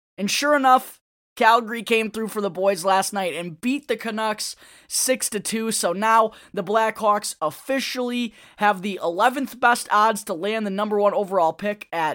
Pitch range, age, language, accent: 180-225 Hz, 20-39, English, American